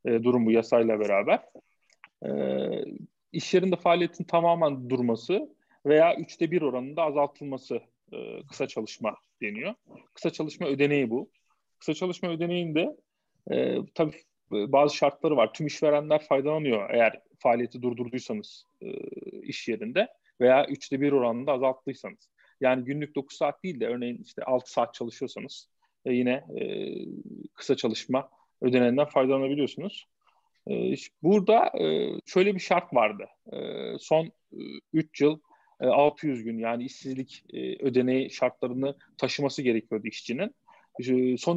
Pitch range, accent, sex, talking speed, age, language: 125-160 Hz, native, male, 120 wpm, 40-59, Turkish